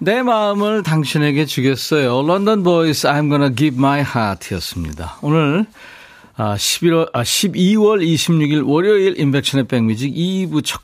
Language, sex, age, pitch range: Korean, male, 40-59, 115-165 Hz